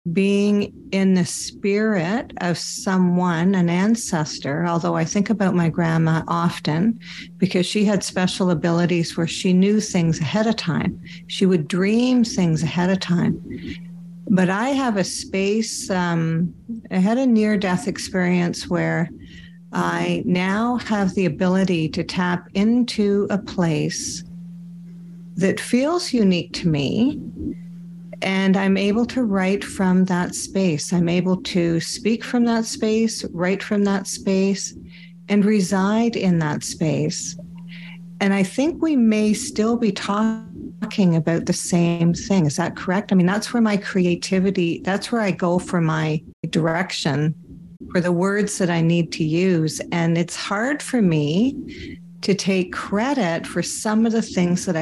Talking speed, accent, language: 150 wpm, American, English